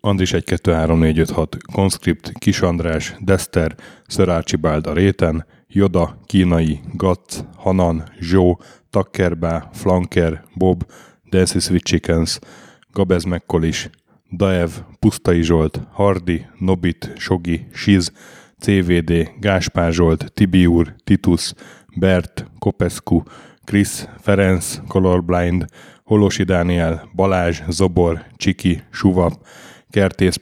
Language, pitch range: Hungarian, 85-100 Hz